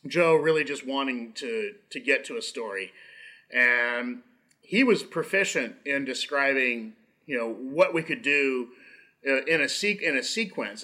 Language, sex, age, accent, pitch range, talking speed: English, male, 30-49, American, 120-160 Hz, 155 wpm